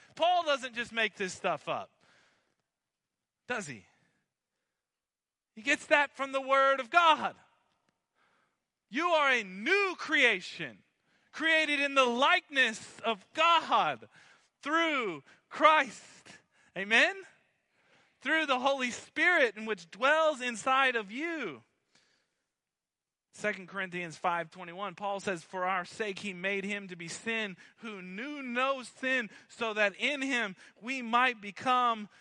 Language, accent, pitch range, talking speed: English, American, 195-270 Hz, 125 wpm